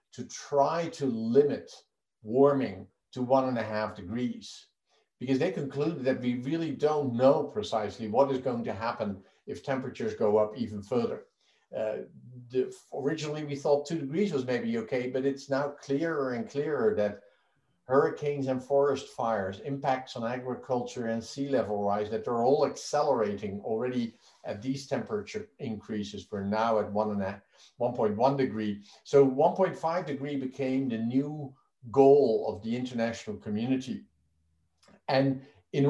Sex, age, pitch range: male, 50-69, 115-140 Hz